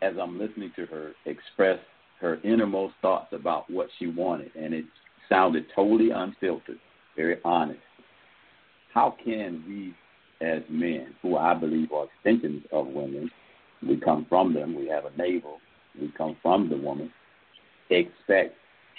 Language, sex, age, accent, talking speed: English, male, 60-79, American, 145 wpm